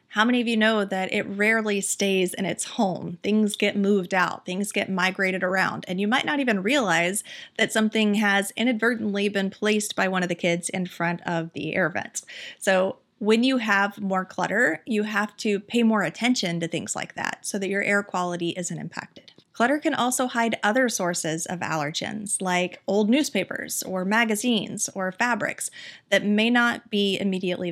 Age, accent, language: 30-49, American, English